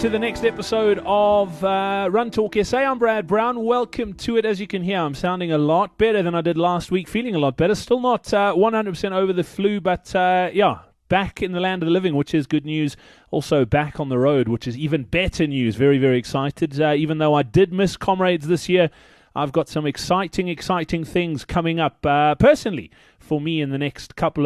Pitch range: 145-185 Hz